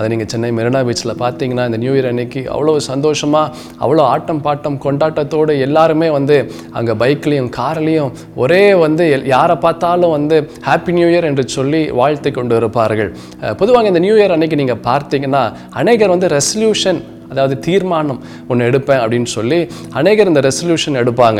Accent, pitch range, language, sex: native, 125-160 Hz, Tamil, male